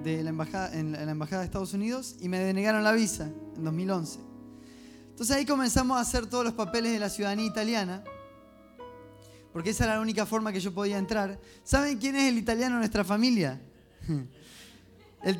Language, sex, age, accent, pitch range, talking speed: Spanish, male, 20-39, Argentinian, 160-225 Hz, 185 wpm